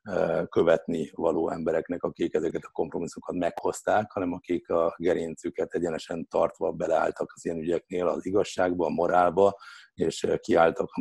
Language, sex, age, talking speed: Hungarian, male, 60-79, 135 wpm